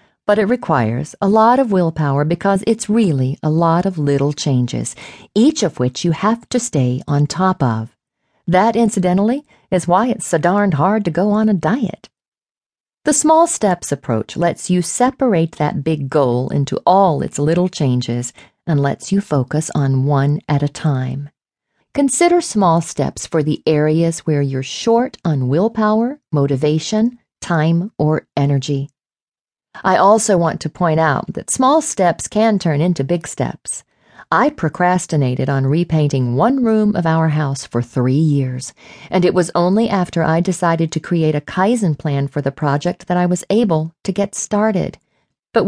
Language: English